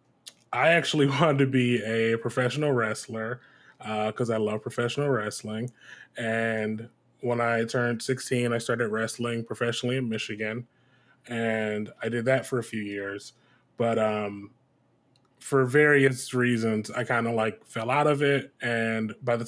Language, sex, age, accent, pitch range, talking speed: English, male, 20-39, American, 110-130 Hz, 150 wpm